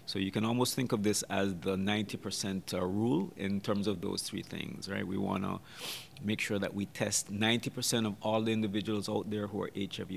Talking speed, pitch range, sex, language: 220 wpm, 100-115 Hz, male, English